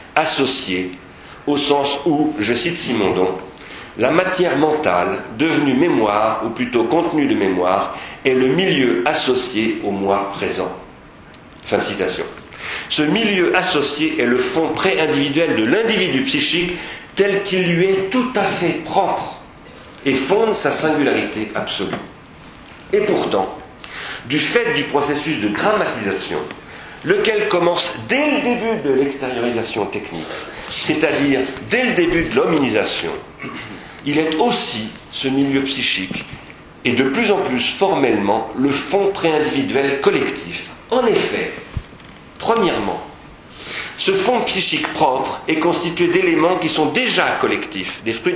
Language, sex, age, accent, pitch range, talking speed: French, male, 40-59, French, 130-185 Hz, 130 wpm